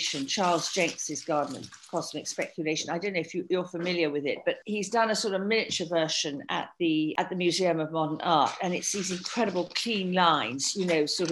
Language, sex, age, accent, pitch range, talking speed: English, female, 50-69, British, 160-205 Hz, 205 wpm